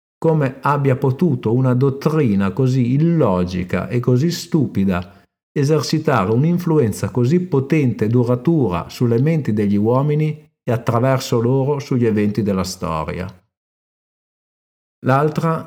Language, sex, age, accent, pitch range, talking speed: Italian, male, 50-69, native, 105-140 Hz, 105 wpm